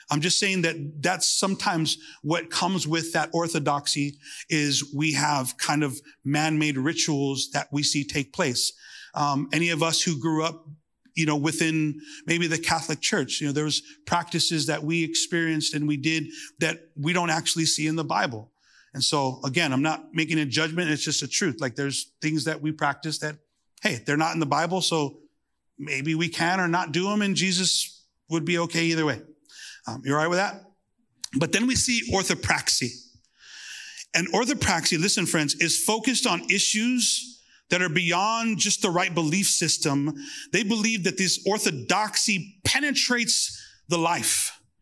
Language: English